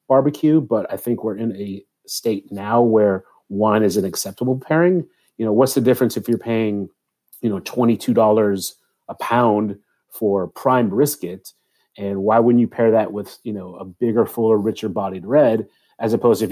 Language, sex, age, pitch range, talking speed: English, male, 30-49, 100-120 Hz, 180 wpm